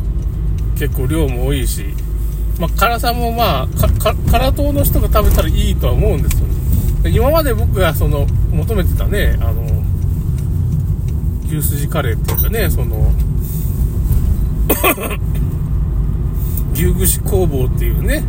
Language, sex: Japanese, male